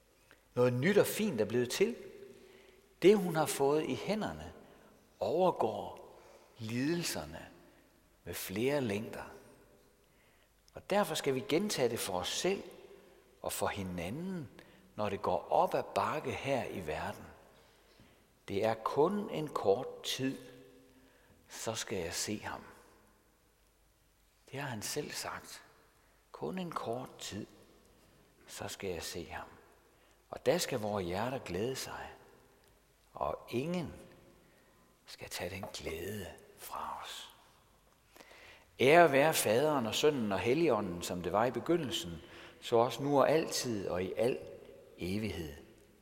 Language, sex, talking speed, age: Danish, male, 130 wpm, 60-79